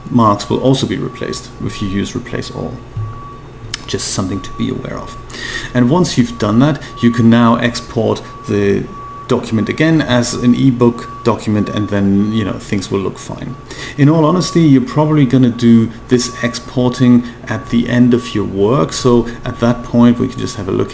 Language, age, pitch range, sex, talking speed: English, 40-59, 110-125 Hz, male, 190 wpm